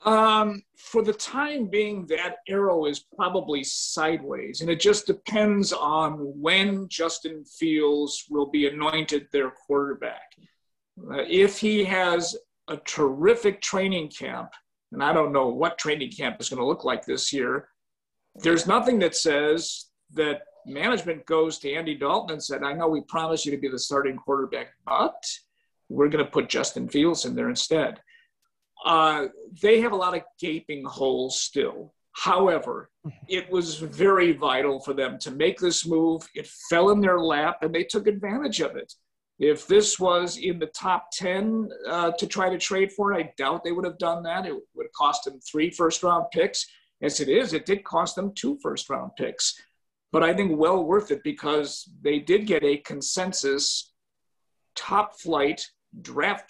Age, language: 50-69, English